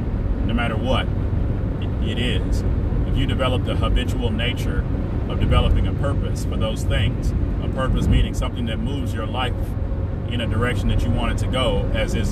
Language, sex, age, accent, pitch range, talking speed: English, male, 30-49, American, 95-105 Hz, 180 wpm